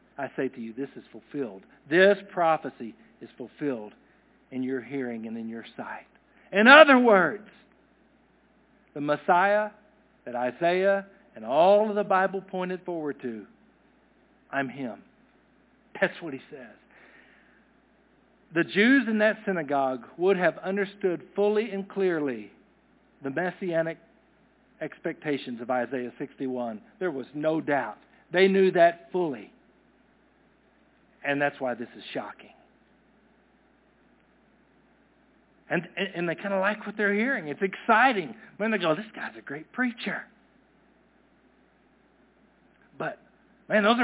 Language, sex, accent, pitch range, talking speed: English, male, American, 150-210 Hz, 125 wpm